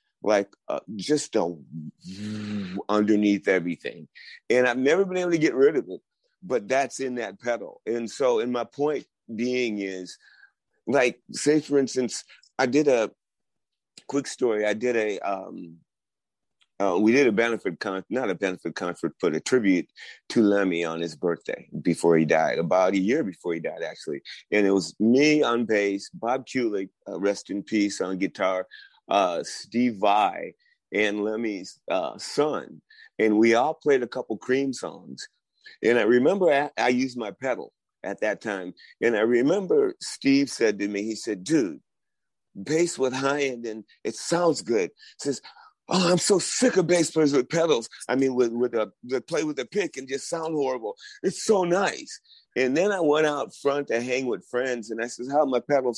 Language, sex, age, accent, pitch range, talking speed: English, male, 30-49, American, 105-155 Hz, 185 wpm